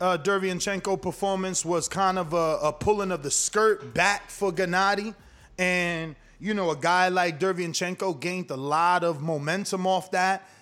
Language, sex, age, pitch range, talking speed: English, male, 20-39, 175-210 Hz, 165 wpm